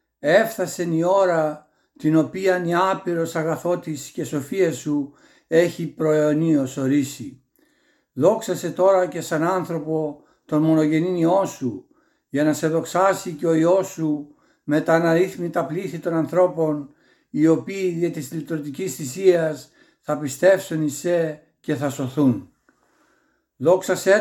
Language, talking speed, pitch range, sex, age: Greek, 125 wpm, 155-185 Hz, male, 60-79